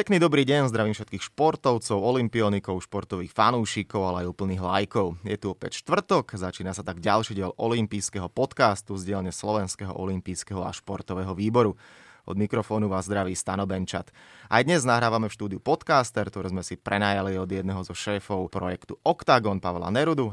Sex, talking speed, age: male, 160 wpm, 20-39